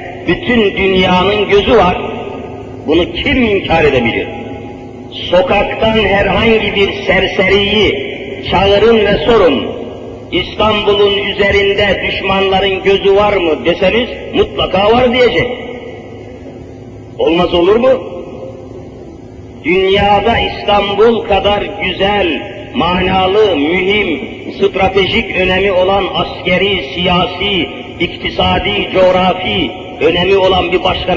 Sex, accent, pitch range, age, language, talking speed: male, native, 180-205 Hz, 50-69, Turkish, 85 wpm